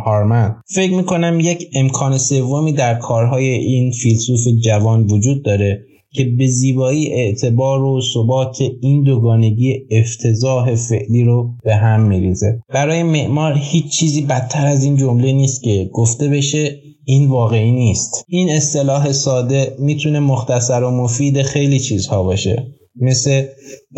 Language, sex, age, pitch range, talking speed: Persian, male, 20-39, 120-145 Hz, 135 wpm